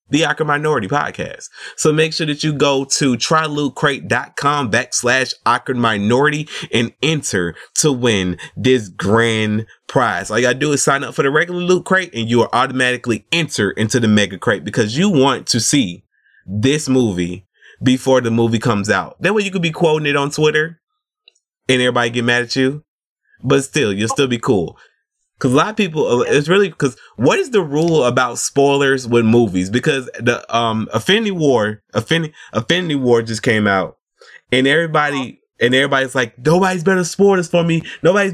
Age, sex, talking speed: 20-39, male, 180 wpm